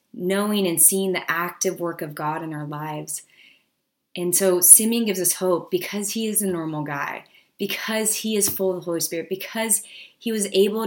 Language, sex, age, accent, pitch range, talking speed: English, female, 20-39, American, 165-195 Hz, 195 wpm